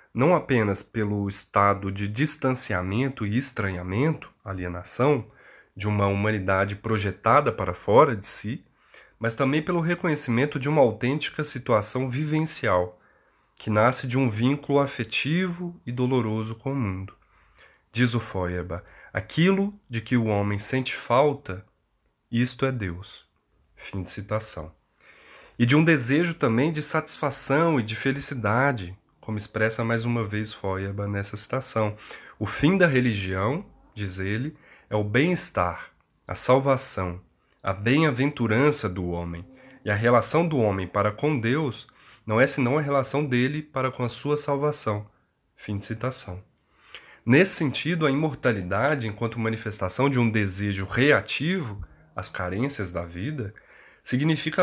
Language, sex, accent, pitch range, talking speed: Portuguese, male, Brazilian, 105-140 Hz, 135 wpm